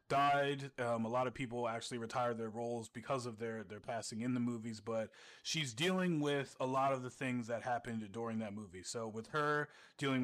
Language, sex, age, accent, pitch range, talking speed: English, male, 30-49, American, 115-145 Hz, 210 wpm